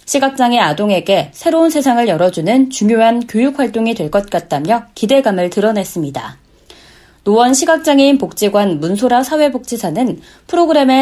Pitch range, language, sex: 195-260 Hz, Korean, female